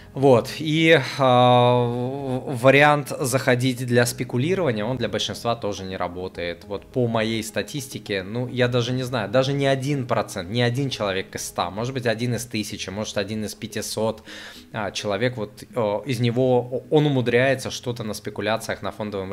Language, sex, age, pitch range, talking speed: Russian, male, 20-39, 105-135 Hz, 160 wpm